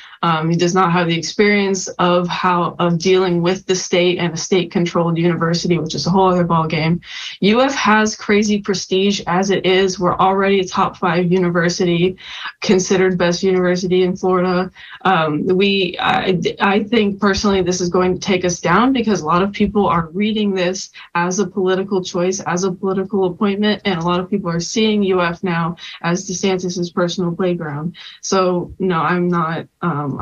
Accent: American